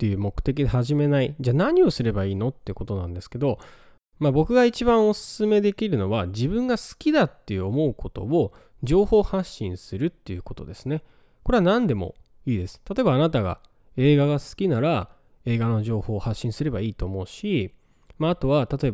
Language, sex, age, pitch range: Japanese, male, 20-39, 105-155 Hz